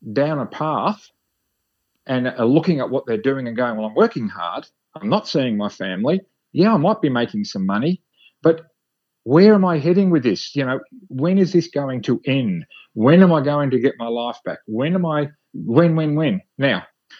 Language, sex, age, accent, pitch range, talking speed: English, male, 40-59, Australian, 120-160 Hz, 200 wpm